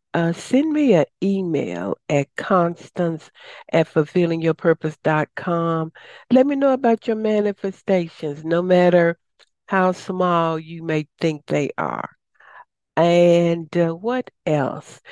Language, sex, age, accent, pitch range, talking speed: English, female, 60-79, American, 155-190 Hz, 110 wpm